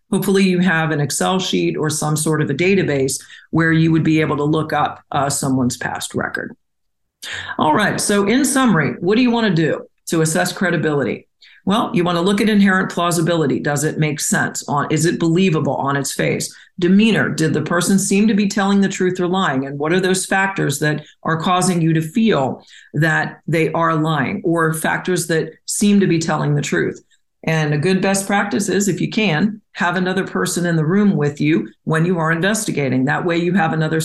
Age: 40-59